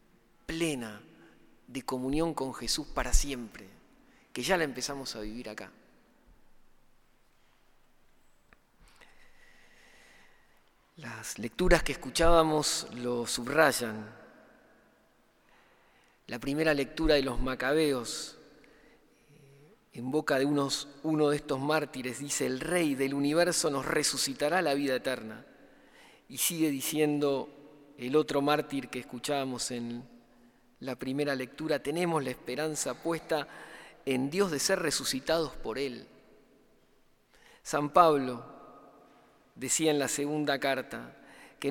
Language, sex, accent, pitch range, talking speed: Spanish, male, Argentinian, 130-160 Hz, 105 wpm